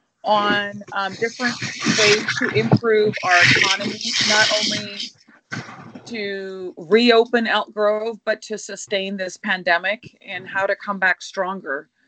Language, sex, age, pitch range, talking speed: English, female, 30-49, 190-225 Hz, 125 wpm